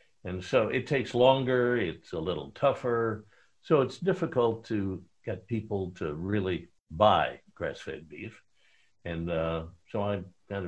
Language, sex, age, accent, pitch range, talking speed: English, male, 60-79, American, 85-110 Hz, 140 wpm